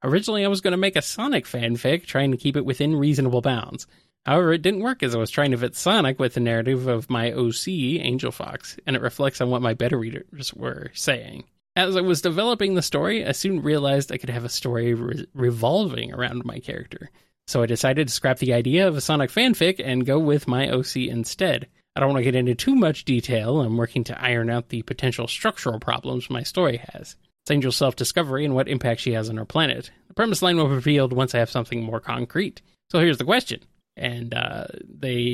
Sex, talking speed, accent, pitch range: male, 220 wpm, American, 120-170 Hz